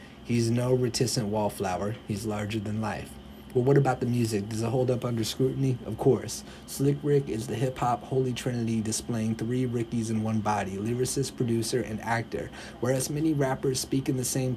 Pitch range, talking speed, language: 110-130 Hz, 185 wpm, English